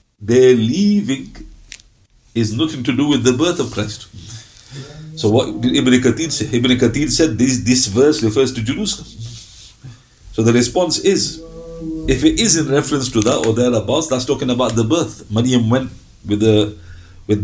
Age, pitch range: 50-69, 105-140 Hz